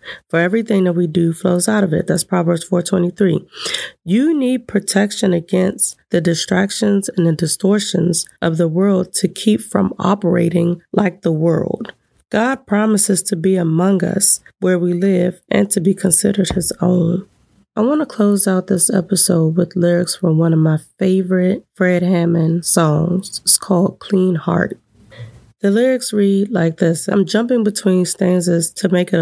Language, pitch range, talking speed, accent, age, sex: English, 170-200 Hz, 160 wpm, American, 20-39, female